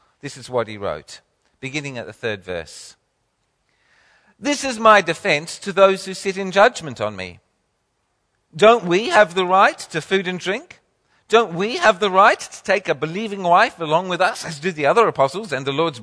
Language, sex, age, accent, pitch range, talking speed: English, male, 50-69, British, 155-220 Hz, 195 wpm